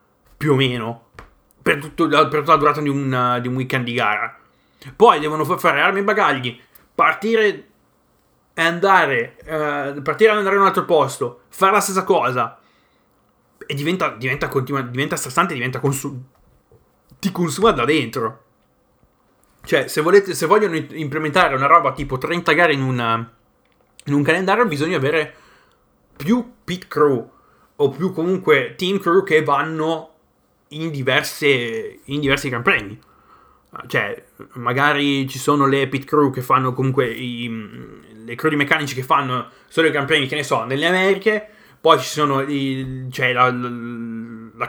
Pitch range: 130-160 Hz